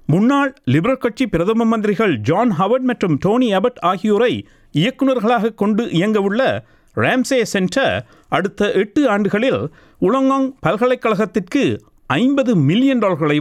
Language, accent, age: Tamil, native, 50-69